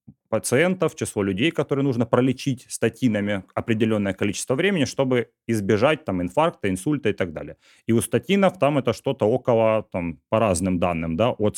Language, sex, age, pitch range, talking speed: Russian, male, 30-49, 105-135 Hz, 160 wpm